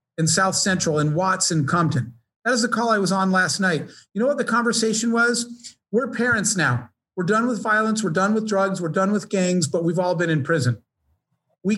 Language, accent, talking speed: English, American, 225 wpm